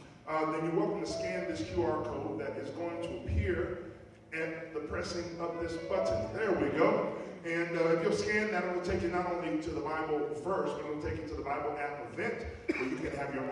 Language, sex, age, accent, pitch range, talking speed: English, male, 40-59, American, 120-180 Hz, 240 wpm